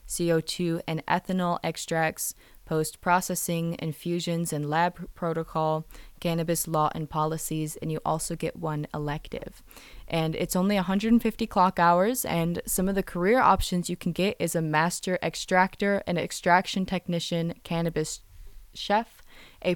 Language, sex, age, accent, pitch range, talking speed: English, female, 20-39, American, 155-180 Hz, 135 wpm